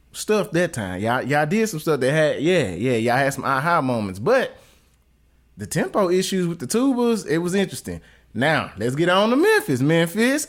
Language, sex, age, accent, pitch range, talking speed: English, male, 20-39, American, 125-195 Hz, 195 wpm